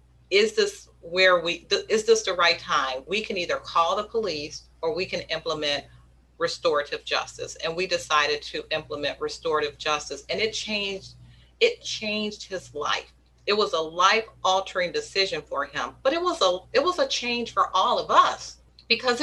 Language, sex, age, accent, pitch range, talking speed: English, female, 40-59, American, 180-245 Hz, 180 wpm